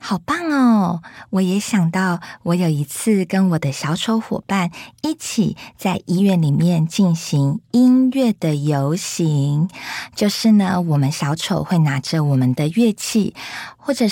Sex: female